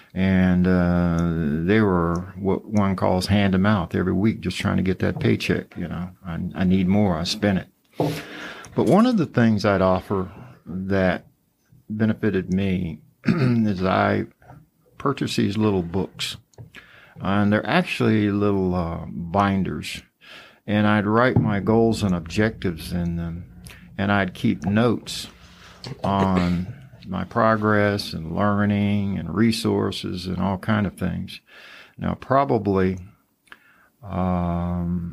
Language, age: English, 60-79